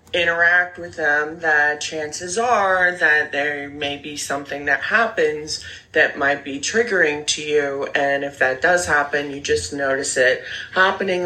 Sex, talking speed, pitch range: female, 155 wpm, 140-155 Hz